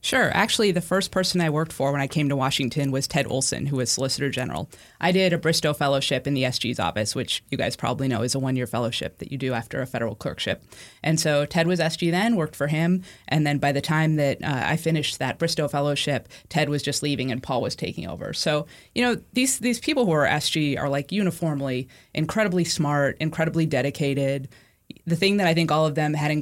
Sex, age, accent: female, 20-39, American